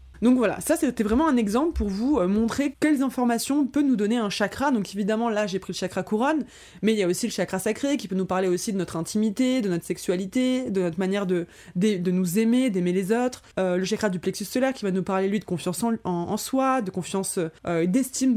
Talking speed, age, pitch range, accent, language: 250 wpm, 20-39, 190-255 Hz, French, French